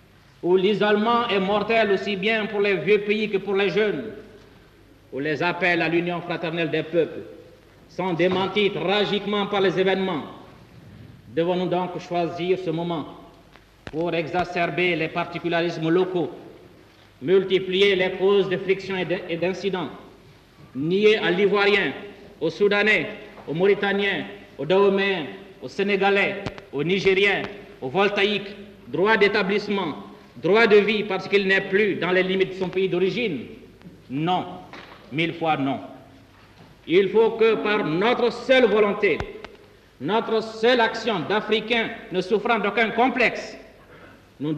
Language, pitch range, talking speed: French, 170-205 Hz, 130 wpm